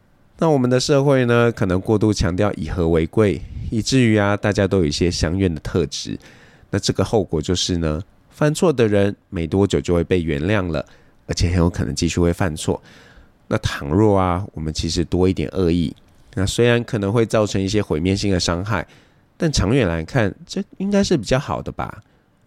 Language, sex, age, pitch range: Chinese, male, 20-39, 85-110 Hz